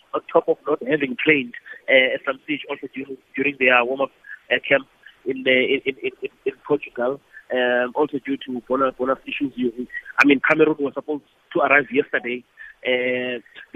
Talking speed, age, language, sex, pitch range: 170 wpm, 30-49, English, male, 130-155 Hz